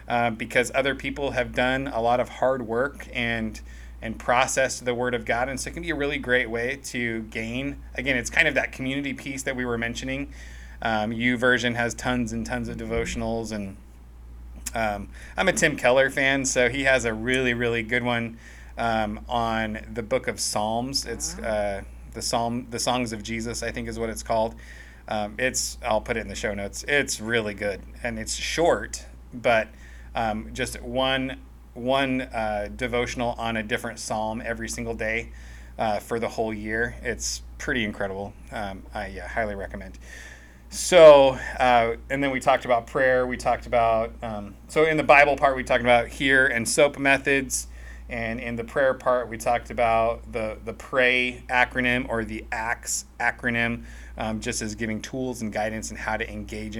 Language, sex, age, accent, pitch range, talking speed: English, male, 20-39, American, 110-125 Hz, 185 wpm